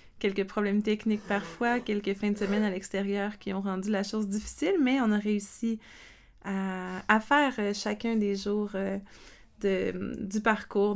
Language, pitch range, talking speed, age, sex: French, 195-215 Hz, 160 wpm, 20-39, female